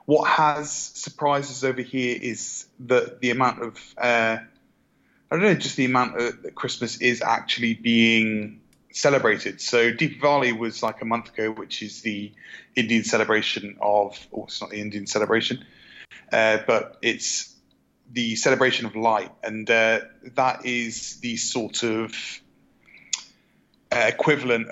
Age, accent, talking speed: 30-49, British, 140 wpm